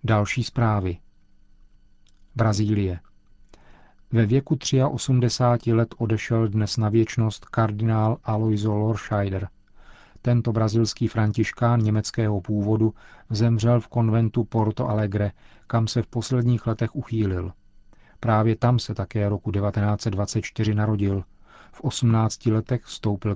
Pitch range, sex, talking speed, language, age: 105-115 Hz, male, 105 wpm, Czech, 40-59